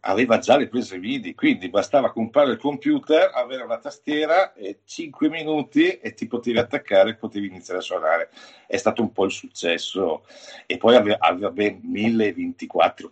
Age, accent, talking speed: 50-69, native, 165 wpm